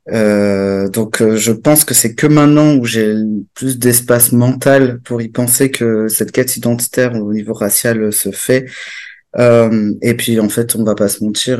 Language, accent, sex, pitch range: French, French, male, 110-135 Hz